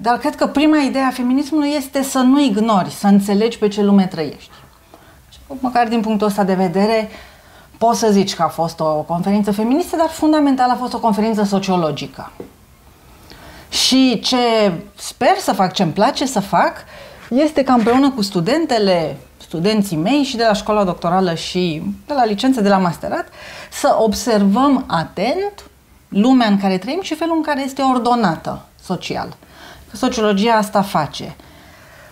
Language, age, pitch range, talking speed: Romanian, 30-49, 190-260 Hz, 165 wpm